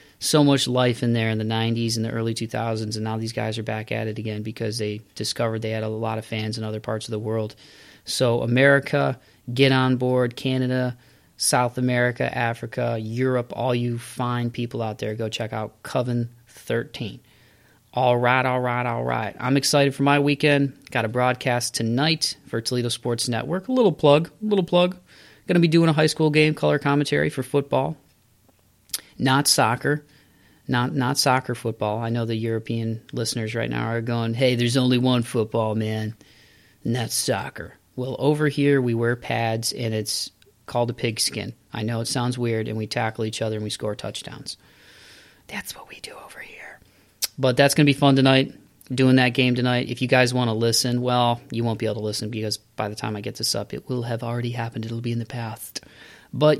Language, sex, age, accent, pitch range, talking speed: English, male, 30-49, American, 110-130 Hz, 205 wpm